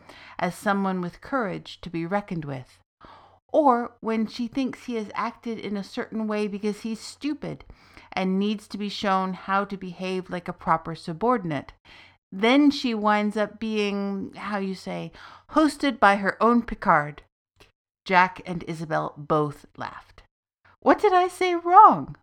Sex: female